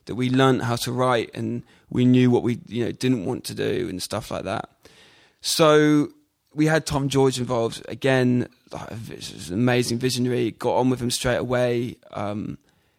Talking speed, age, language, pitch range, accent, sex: 180 wpm, 20-39, English, 120-135 Hz, British, male